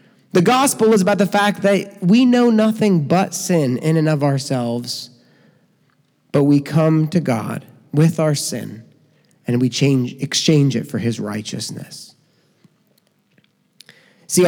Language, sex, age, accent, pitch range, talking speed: English, male, 30-49, American, 145-200 Hz, 135 wpm